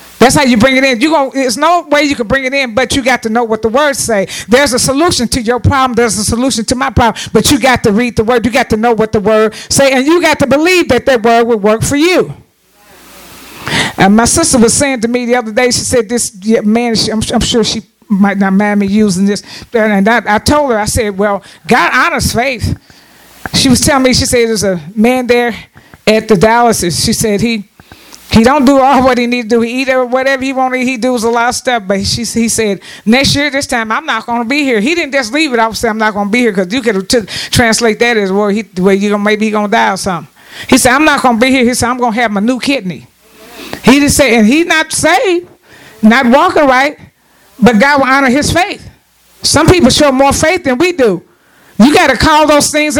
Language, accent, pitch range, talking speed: English, American, 220-270 Hz, 255 wpm